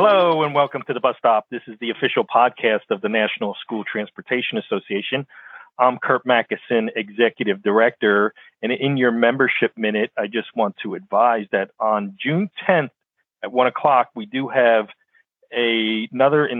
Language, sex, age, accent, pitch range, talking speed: English, male, 40-59, American, 115-135 Hz, 165 wpm